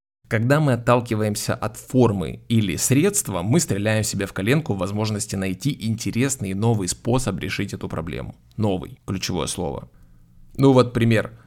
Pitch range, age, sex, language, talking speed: 100-130 Hz, 20-39, male, Ukrainian, 140 wpm